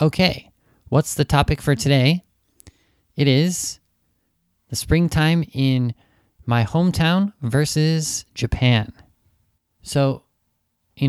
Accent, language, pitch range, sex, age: American, Japanese, 115-140 Hz, male, 20-39